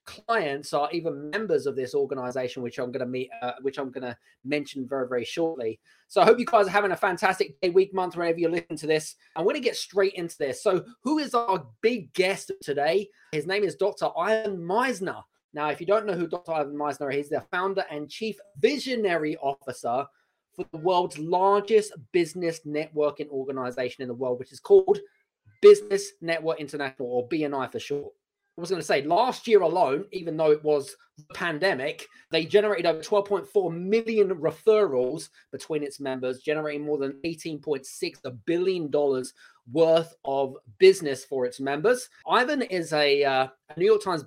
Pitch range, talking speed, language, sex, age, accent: 145-215 Hz, 185 wpm, English, male, 20-39, British